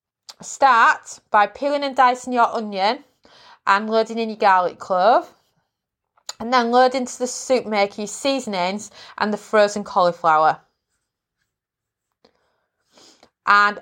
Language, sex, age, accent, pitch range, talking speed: English, female, 20-39, British, 195-245 Hz, 115 wpm